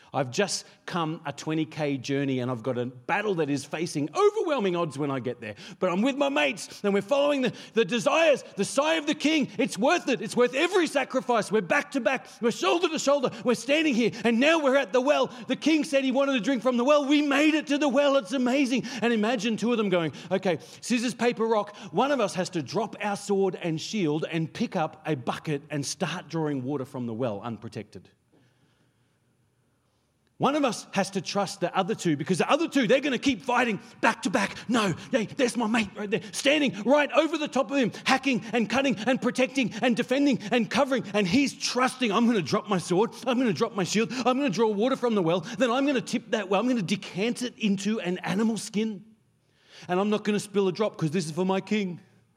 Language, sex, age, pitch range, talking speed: English, male, 40-59, 180-260 Hz, 235 wpm